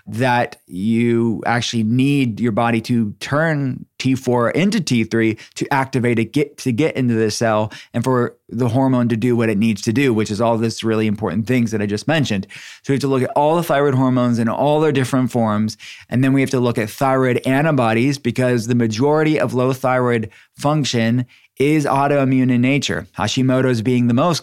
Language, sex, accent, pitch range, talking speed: English, male, American, 115-130 Hz, 200 wpm